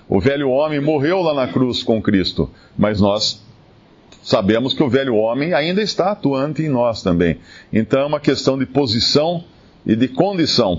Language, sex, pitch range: Portuguese, male, 105-140 Hz